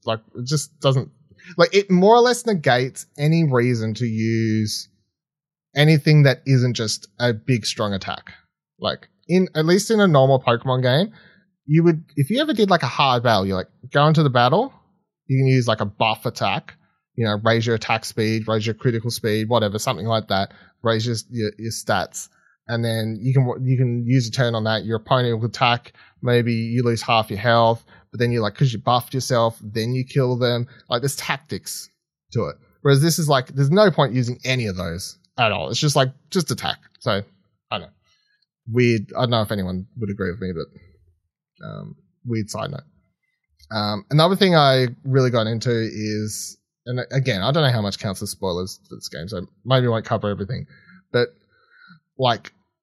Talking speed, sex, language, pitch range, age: 200 wpm, male, English, 110-150 Hz, 20-39